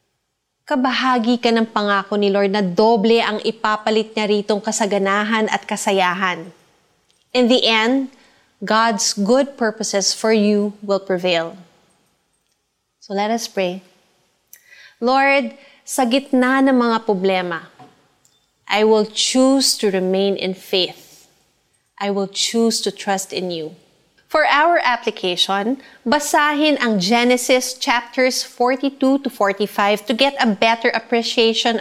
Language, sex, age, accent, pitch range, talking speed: Filipino, female, 20-39, native, 200-260 Hz, 120 wpm